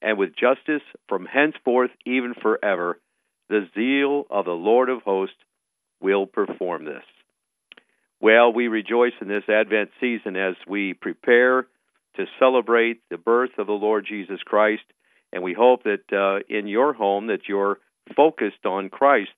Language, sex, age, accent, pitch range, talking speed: English, male, 50-69, American, 105-140 Hz, 150 wpm